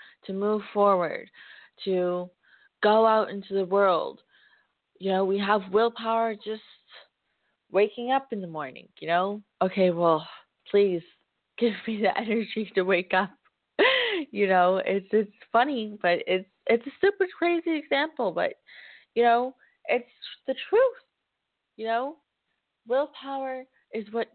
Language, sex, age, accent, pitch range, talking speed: English, female, 20-39, American, 190-230 Hz, 135 wpm